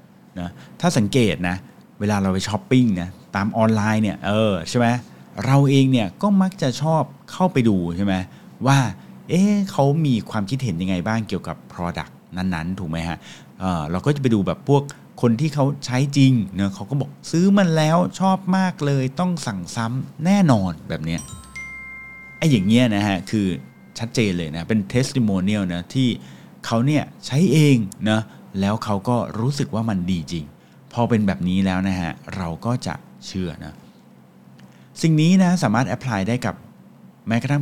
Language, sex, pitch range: English, male, 95-130 Hz